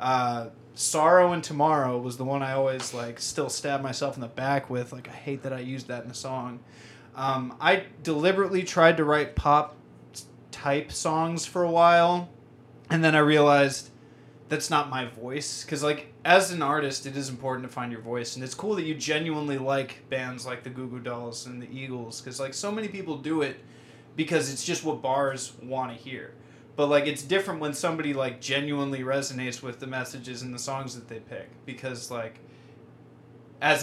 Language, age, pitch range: English, 20-39, 125-150 Hz